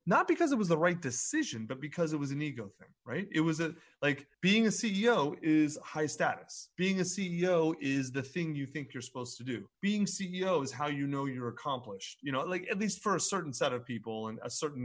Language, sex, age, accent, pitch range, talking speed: English, male, 30-49, American, 120-160 Hz, 240 wpm